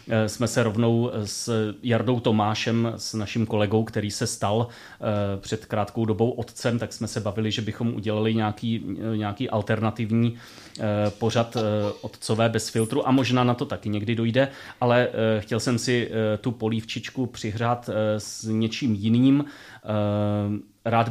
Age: 30-49